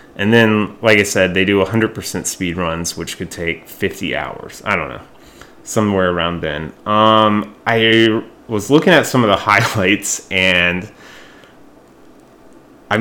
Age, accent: 30-49, American